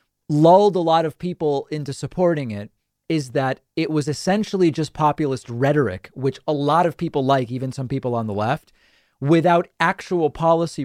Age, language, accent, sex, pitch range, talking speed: 30-49, English, American, male, 125-165 Hz, 170 wpm